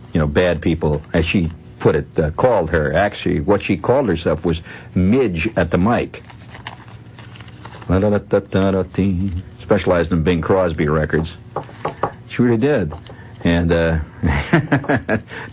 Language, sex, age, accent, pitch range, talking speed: English, male, 60-79, American, 85-115 Hz, 120 wpm